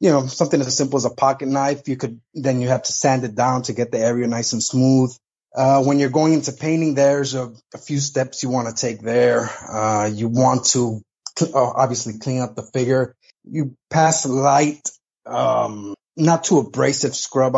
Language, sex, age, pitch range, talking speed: English, male, 20-39, 120-145 Hz, 205 wpm